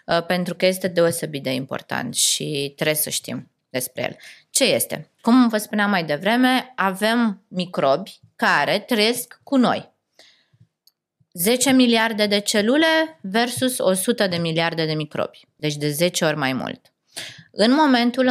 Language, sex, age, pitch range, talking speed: Romanian, female, 20-39, 155-205 Hz, 140 wpm